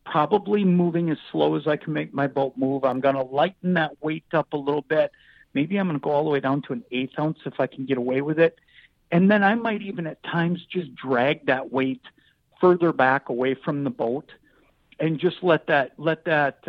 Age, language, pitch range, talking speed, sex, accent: 50-69, English, 135-170 Hz, 225 wpm, male, American